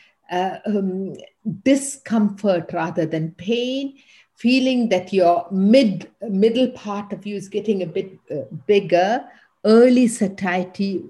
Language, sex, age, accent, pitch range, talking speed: English, female, 50-69, Indian, 175-225 Hz, 120 wpm